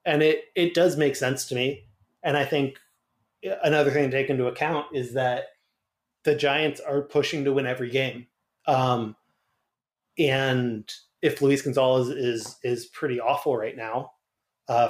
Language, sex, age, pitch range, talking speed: English, male, 30-49, 135-170 Hz, 160 wpm